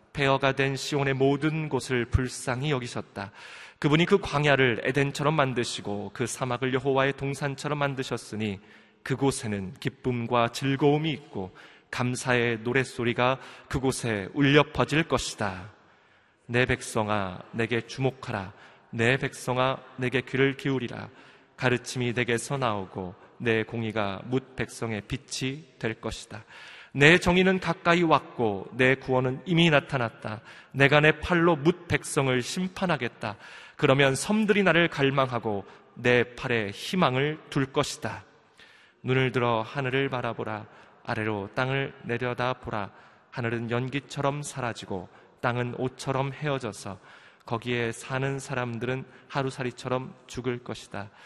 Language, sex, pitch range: Korean, male, 115-140 Hz